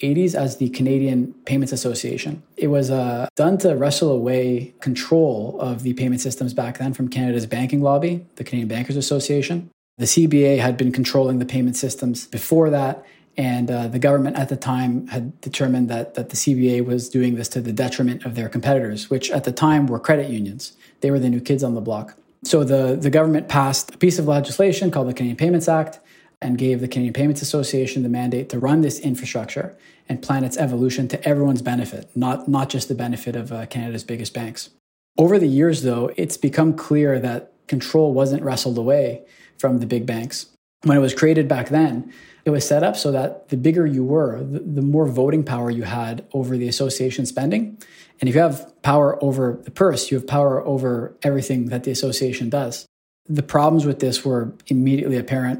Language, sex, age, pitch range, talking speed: English, male, 20-39, 125-145 Hz, 200 wpm